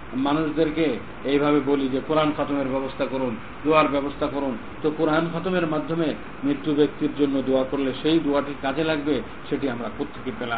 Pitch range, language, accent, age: 135-160 Hz, Bengali, native, 50-69